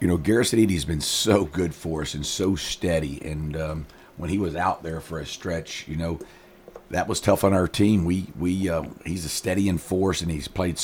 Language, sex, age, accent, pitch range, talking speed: English, male, 50-69, American, 75-90 Hz, 225 wpm